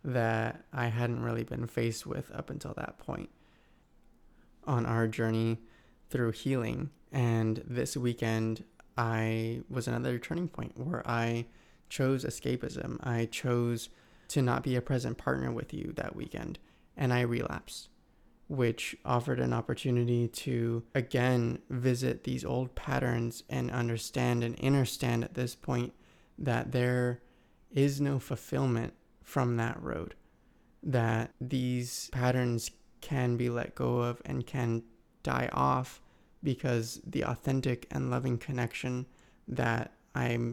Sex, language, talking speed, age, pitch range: male, English, 130 wpm, 20-39, 115-130 Hz